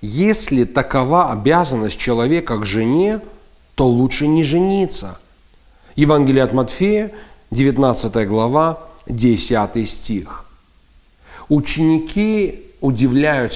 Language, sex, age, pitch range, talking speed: Russian, male, 40-59, 130-180 Hz, 85 wpm